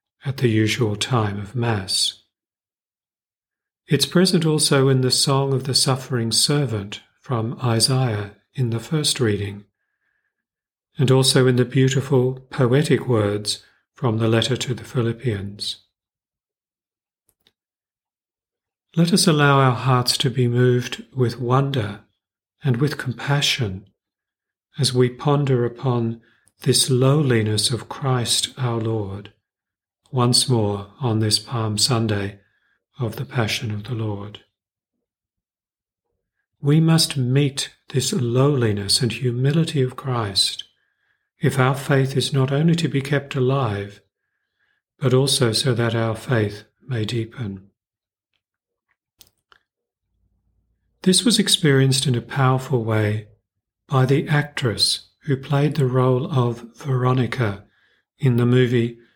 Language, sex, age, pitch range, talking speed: English, male, 40-59, 110-135 Hz, 120 wpm